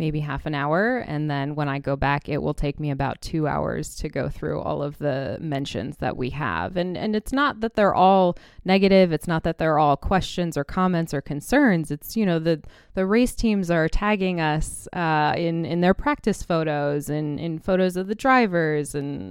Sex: female